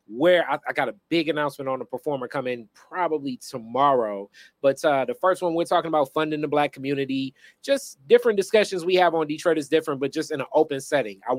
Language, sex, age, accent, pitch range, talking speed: English, male, 20-39, American, 135-165 Hz, 215 wpm